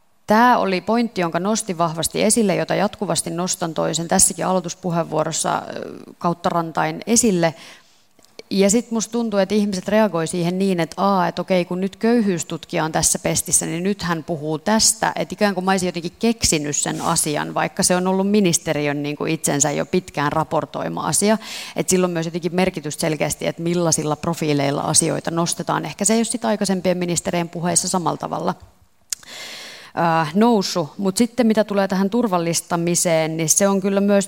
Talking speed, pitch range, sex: 165 wpm, 160-195 Hz, female